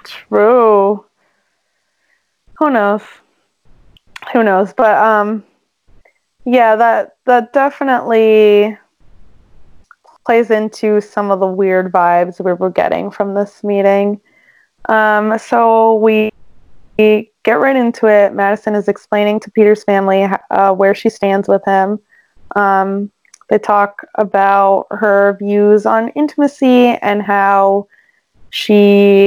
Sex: female